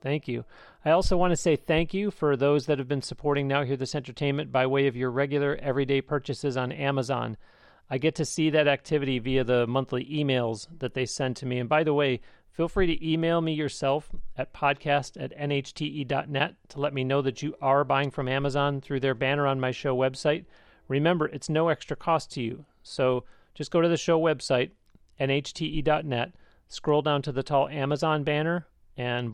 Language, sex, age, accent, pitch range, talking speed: English, male, 40-59, American, 130-150 Hz, 200 wpm